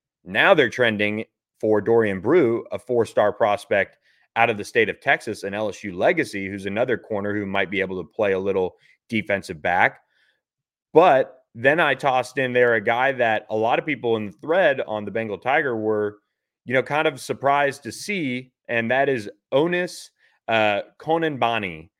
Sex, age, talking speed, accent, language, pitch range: male, 30-49, 175 wpm, American, English, 105-130 Hz